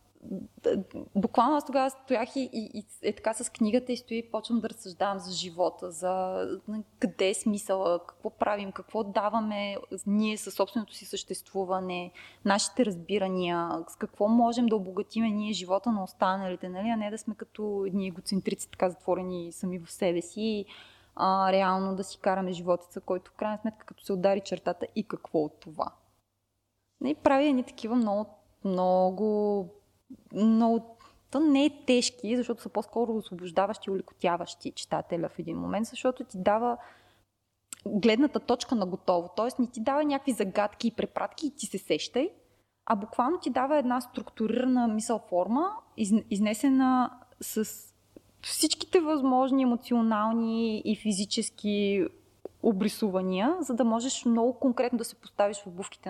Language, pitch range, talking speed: Bulgarian, 190-240 Hz, 150 wpm